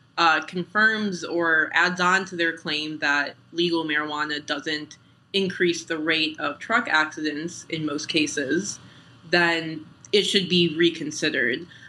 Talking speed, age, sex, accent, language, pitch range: 130 wpm, 20-39, female, American, English, 155-180 Hz